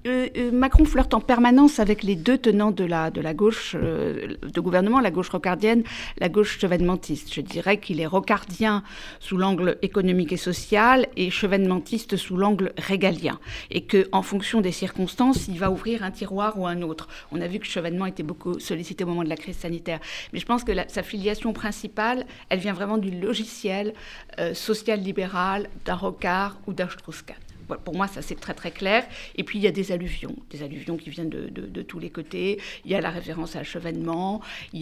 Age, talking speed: 50-69, 205 wpm